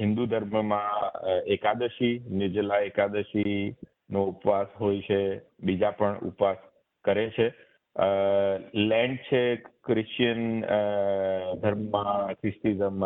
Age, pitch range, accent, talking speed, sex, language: 50-69, 105-125 Hz, native, 45 wpm, male, Gujarati